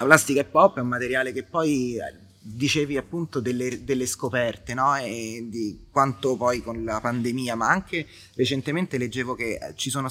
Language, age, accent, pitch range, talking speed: Italian, 20-39, native, 100-125 Hz, 170 wpm